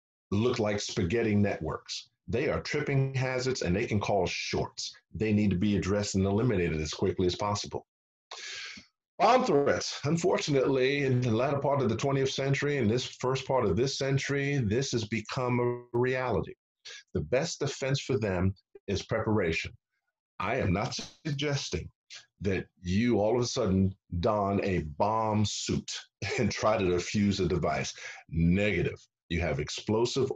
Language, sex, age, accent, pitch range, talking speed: English, male, 40-59, American, 95-130 Hz, 155 wpm